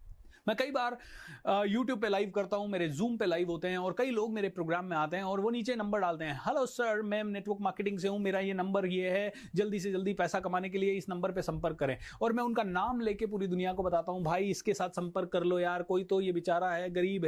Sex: male